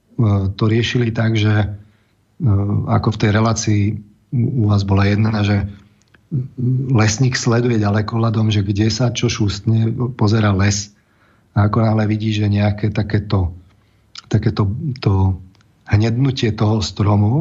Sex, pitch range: male, 105-120 Hz